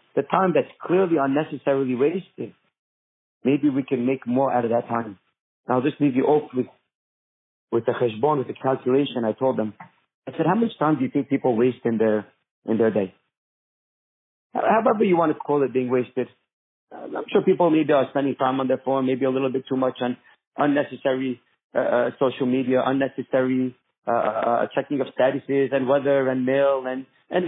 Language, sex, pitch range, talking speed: English, male, 130-165 Hz, 190 wpm